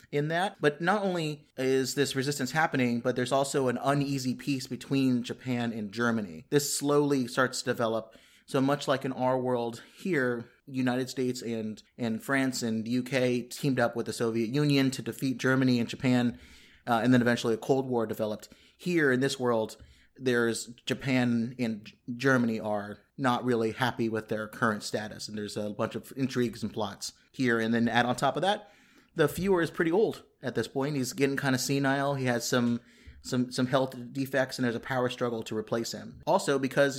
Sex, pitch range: male, 115-140 Hz